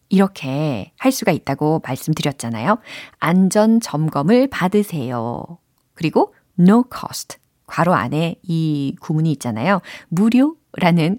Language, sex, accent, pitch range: Korean, female, native, 150-230 Hz